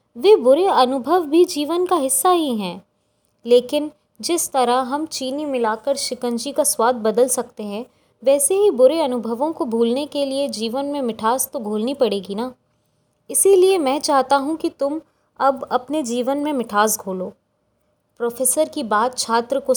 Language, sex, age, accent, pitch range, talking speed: Hindi, female, 20-39, native, 225-285 Hz, 160 wpm